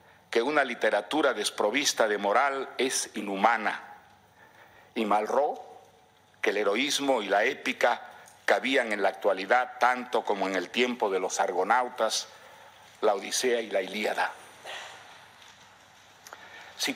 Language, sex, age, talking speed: English, male, 50-69, 120 wpm